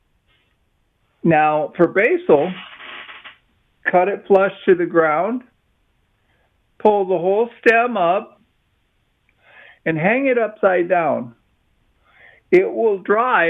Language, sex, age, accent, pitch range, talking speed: English, male, 50-69, American, 155-215 Hz, 100 wpm